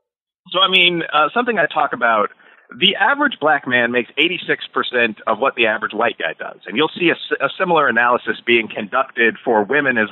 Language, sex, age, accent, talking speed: English, male, 40-59, American, 200 wpm